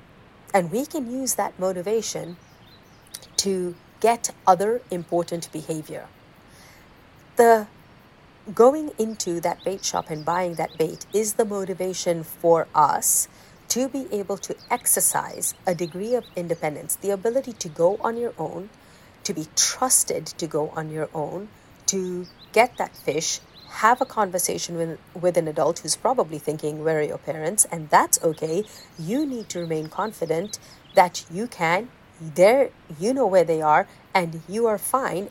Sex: female